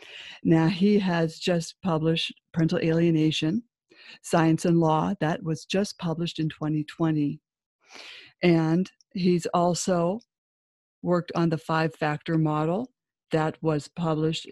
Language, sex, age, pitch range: English, female, 50-69, 155-180 Hz